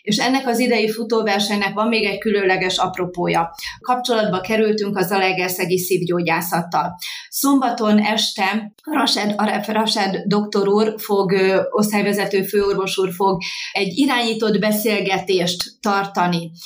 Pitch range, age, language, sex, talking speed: 185-220 Hz, 30-49, Hungarian, female, 115 wpm